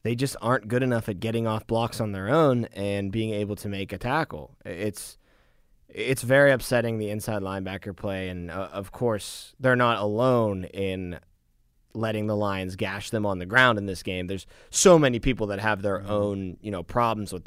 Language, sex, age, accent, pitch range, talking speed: English, male, 20-39, American, 95-125 Hz, 200 wpm